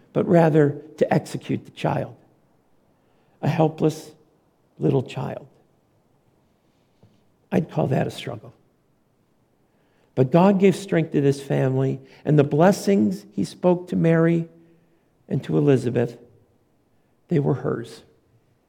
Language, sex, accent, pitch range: English, male, American, 135-190 Hz